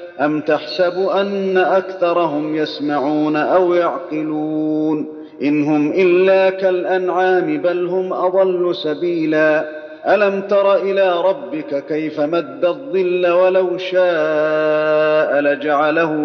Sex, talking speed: male, 90 wpm